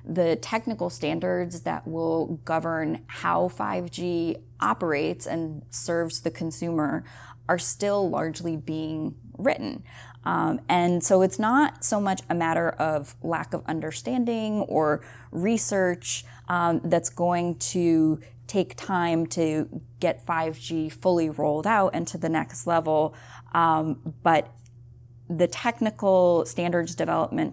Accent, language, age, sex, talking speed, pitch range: American, English, 20-39, female, 120 wpm, 145-175 Hz